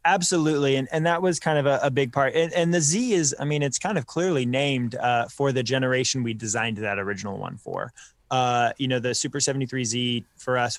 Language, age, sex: English, 20-39, male